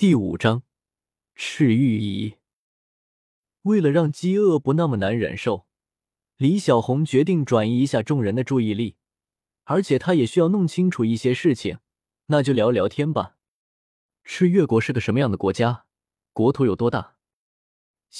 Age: 20-39